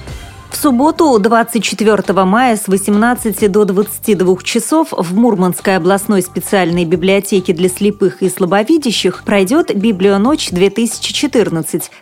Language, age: Russian, 30-49